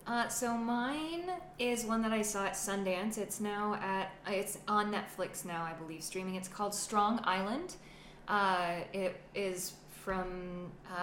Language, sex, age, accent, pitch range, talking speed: English, female, 20-39, American, 170-195 Hz, 150 wpm